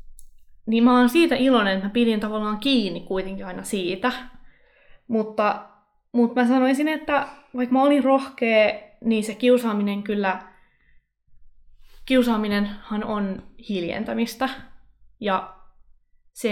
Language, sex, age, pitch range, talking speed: Finnish, female, 20-39, 195-245 Hz, 115 wpm